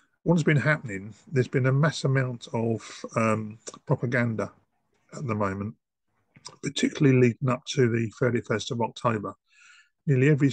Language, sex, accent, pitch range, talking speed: English, male, British, 110-135 Hz, 135 wpm